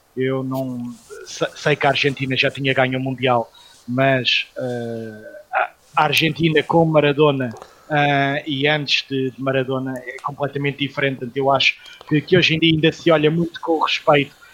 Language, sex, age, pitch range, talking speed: Portuguese, male, 20-39, 135-150 Hz, 165 wpm